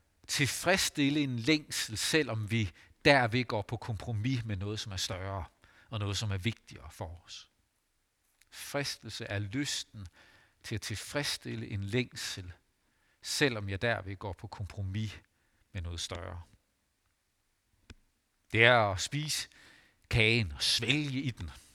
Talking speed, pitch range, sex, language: 130 wpm, 95-120 Hz, male, Danish